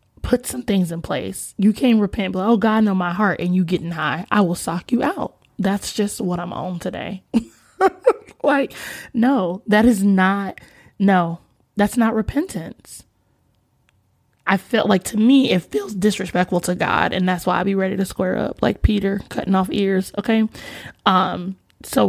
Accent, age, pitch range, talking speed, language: American, 20-39, 180-235 Hz, 175 wpm, English